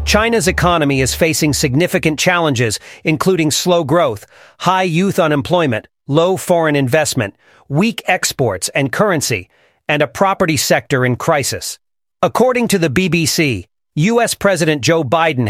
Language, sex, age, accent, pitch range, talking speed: English, male, 40-59, American, 140-180 Hz, 130 wpm